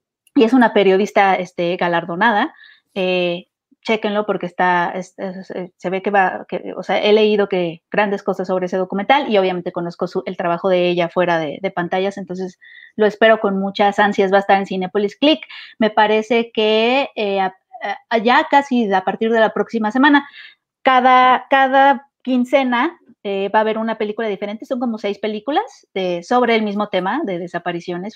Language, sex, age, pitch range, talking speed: Spanish, female, 30-49, 185-245 Hz, 185 wpm